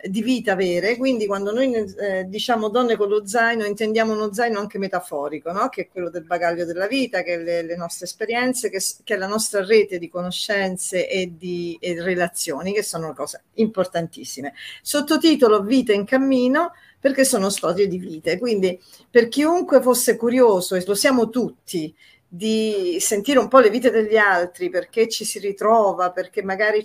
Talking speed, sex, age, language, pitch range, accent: 175 wpm, female, 50-69, Italian, 185-220 Hz, native